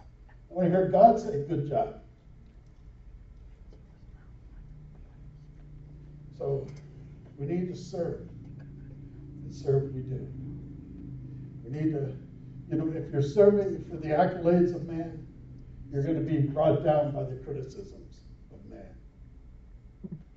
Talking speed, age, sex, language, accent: 120 wpm, 60-79, male, English, American